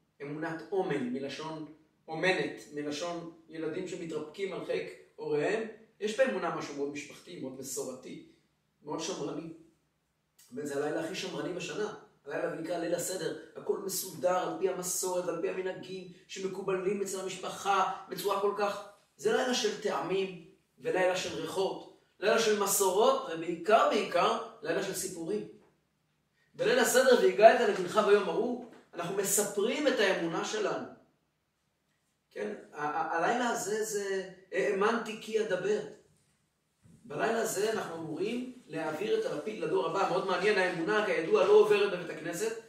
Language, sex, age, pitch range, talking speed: Hebrew, male, 30-49, 155-210 Hz, 135 wpm